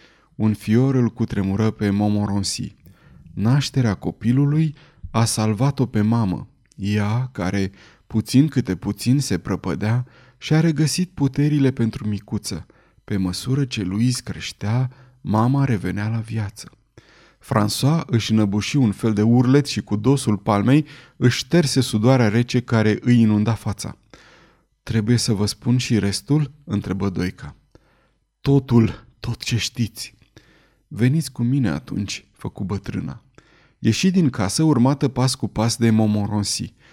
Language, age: Romanian, 30-49